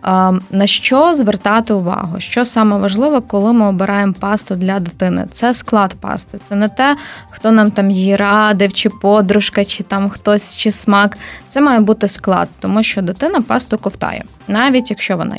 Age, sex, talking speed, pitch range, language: 20-39, female, 170 wpm, 195-225 Hz, Ukrainian